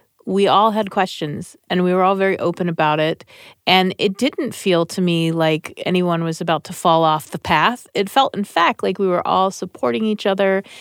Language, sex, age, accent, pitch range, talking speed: English, female, 30-49, American, 165-210 Hz, 210 wpm